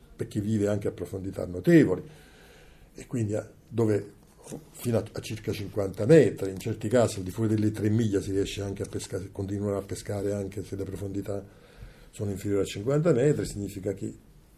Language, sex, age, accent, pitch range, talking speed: Italian, male, 50-69, native, 100-125 Hz, 180 wpm